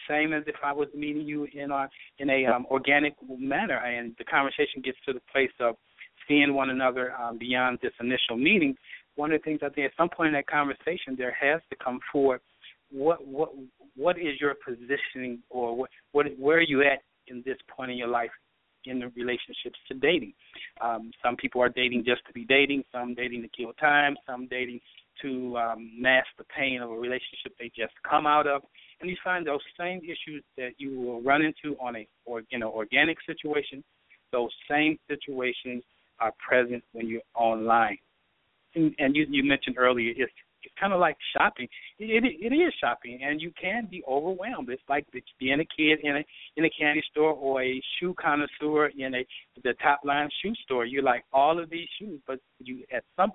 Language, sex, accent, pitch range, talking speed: English, male, American, 125-150 Hz, 200 wpm